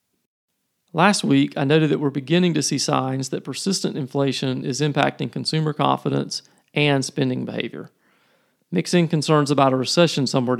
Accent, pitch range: American, 130-160 Hz